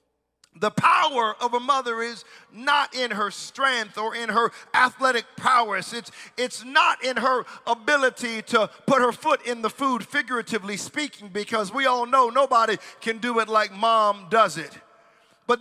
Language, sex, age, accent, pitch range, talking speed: English, male, 40-59, American, 235-295 Hz, 165 wpm